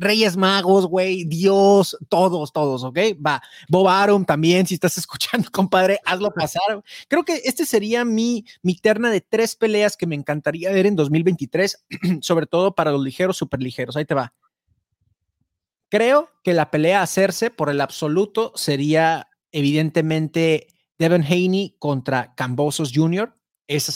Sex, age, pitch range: male, 30-49, 135-185 Hz